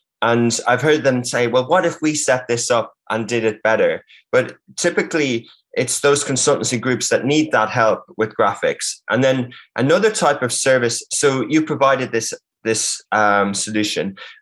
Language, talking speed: English, 170 wpm